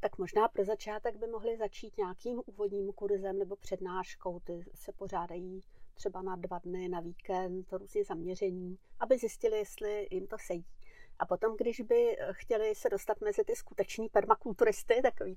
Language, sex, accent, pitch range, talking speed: Czech, female, native, 185-225 Hz, 165 wpm